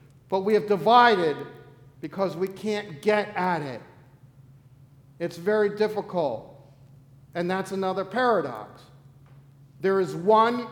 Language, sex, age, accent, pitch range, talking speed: English, male, 50-69, American, 135-220 Hz, 110 wpm